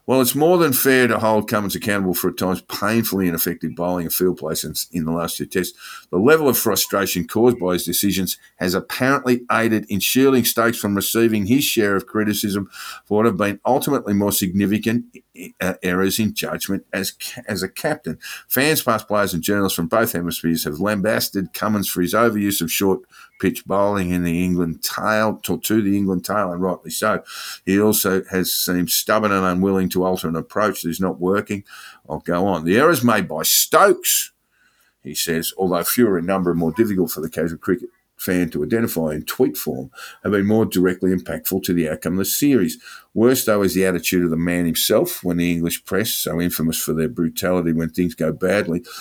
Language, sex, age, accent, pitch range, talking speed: English, male, 50-69, Australian, 90-110 Hz, 200 wpm